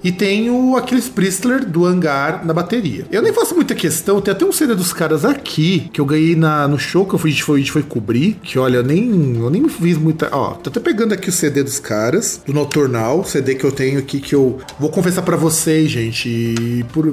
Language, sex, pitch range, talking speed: Portuguese, male, 145-200 Hz, 230 wpm